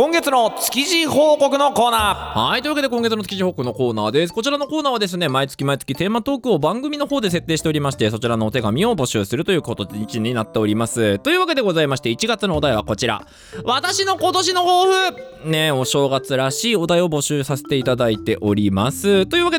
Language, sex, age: Japanese, male, 20-39